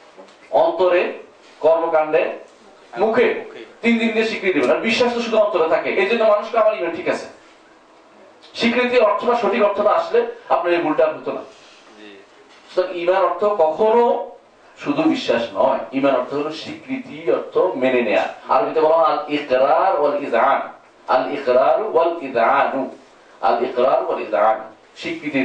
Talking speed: 55 wpm